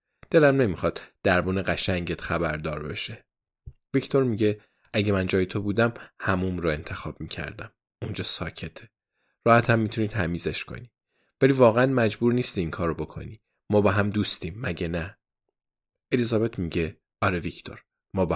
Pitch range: 95-115 Hz